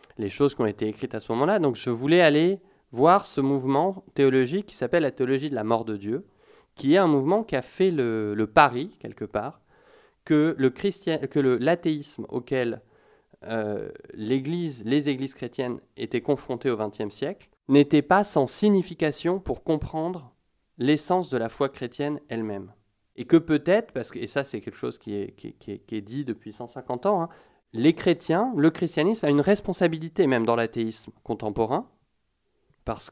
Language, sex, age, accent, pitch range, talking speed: French, male, 20-39, French, 115-150 Hz, 185 wpm